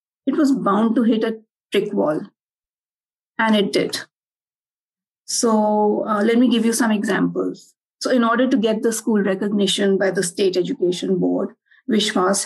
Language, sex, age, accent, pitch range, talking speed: English, female, 50-69, Indian, 190-230 Hz, 160 wpm